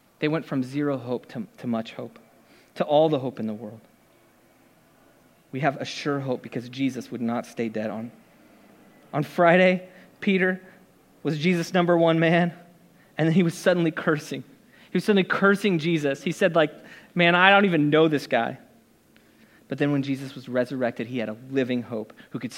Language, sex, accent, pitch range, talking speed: English, male, American, 125-175 Hz, 185 wpm